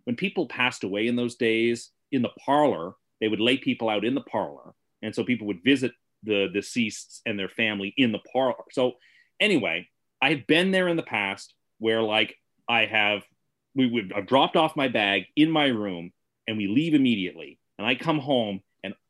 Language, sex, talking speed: English, male, 200 wpm